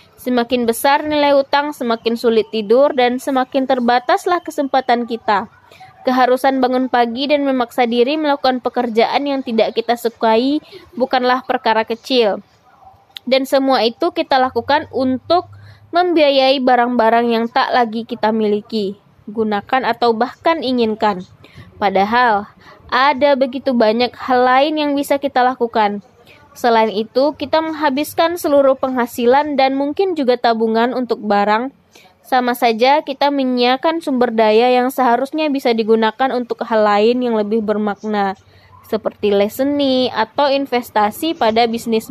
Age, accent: 20-39, native